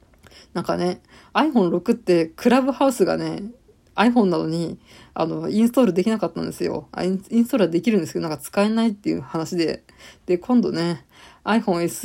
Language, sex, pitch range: Japanese, female, 170-205 Hz